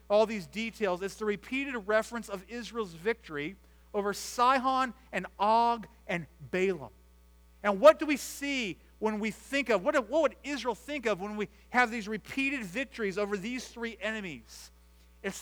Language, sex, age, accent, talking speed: English, male, 40-59, American, 165 wpm